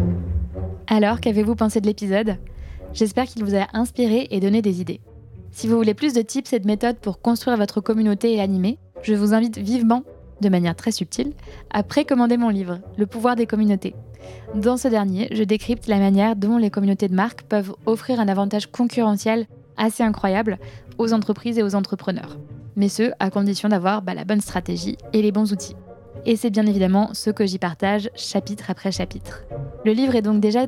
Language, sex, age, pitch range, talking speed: French, female, 20-39, 195-230 Hz, 190 wpm